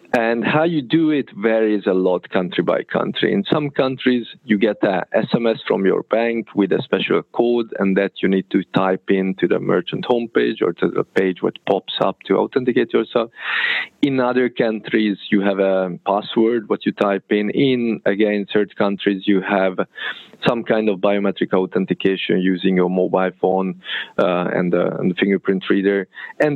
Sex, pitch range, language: male, 100-120 Hz, English